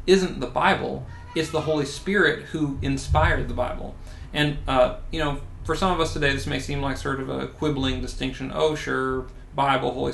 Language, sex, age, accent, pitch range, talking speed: English, male, 30-49, American, 90-145 Hz, 195 wpm